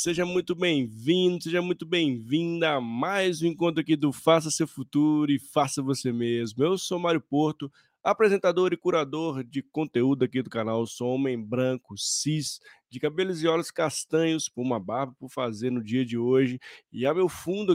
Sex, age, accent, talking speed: male, 20-39, Brazilian, 185 wpm